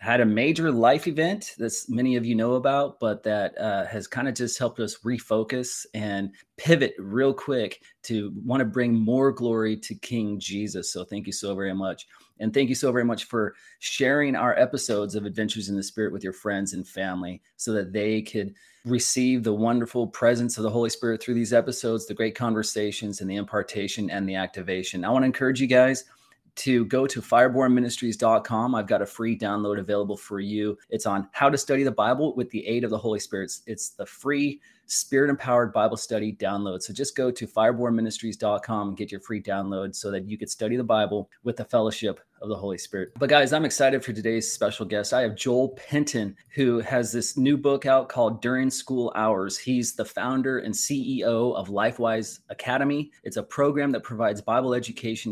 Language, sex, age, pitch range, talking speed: English, male, 30-49, 105-130 Hz, 200 wpm